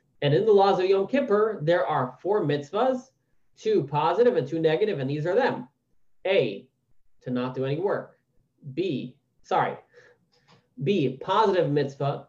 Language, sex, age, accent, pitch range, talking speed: English, male, 30-49, American, 135-190 Hz, 150 wpm